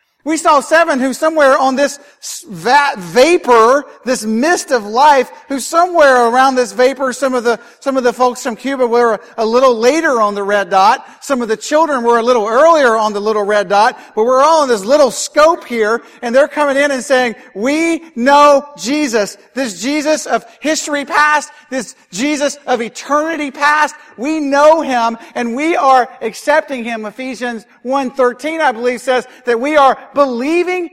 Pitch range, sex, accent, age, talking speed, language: 240-300 Hz, male, American, 50-69, 175 wpm, English